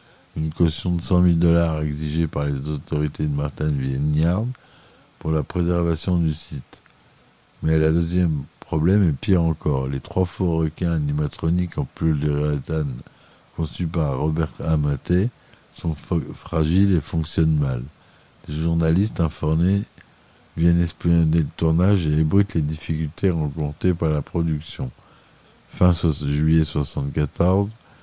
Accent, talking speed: French, 135 wpm